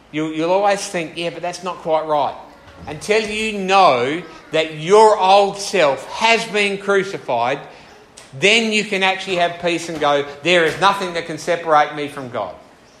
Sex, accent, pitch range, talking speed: male, Australian, 150-195 Hz, 165 wpm